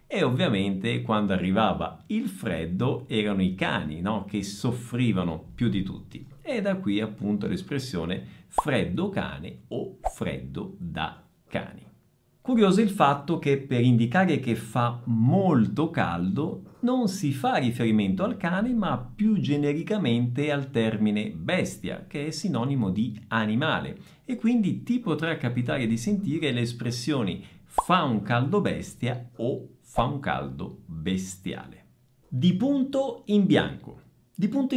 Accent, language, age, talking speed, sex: native, Italian, 50-69, 135 wpm, male